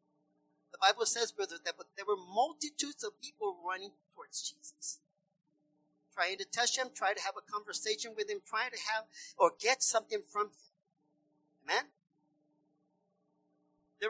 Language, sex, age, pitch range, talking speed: English, male, 40-59, 155-260 Hz, 145 wpm